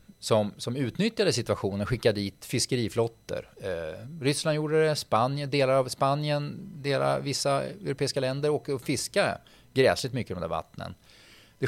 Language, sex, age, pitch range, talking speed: Swedish, male, 30-49, 110-145 Hz, 140 wpm